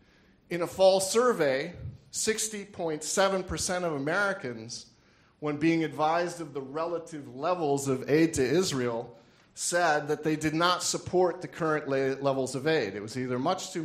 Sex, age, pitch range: male, 40-59, 135-165 Hz